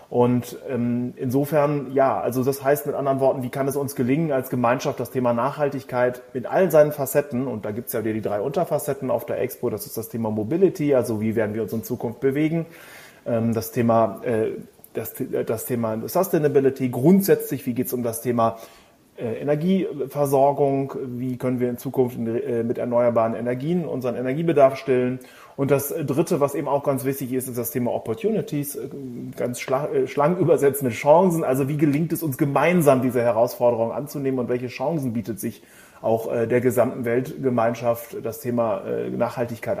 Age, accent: 30-49, German